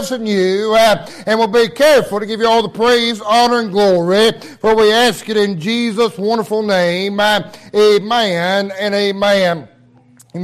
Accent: American